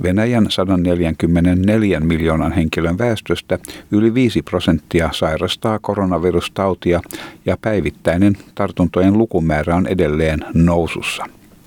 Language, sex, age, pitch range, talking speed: Finnish, male, 50-69, 80-100 Hz, 85 wpm